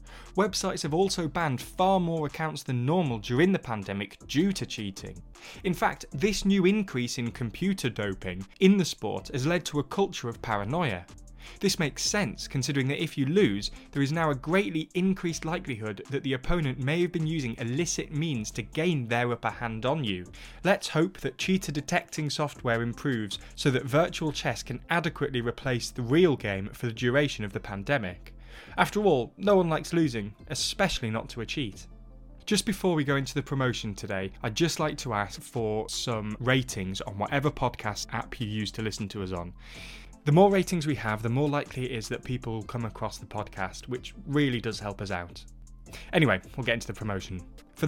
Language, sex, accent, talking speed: English, male, British, 195 wpm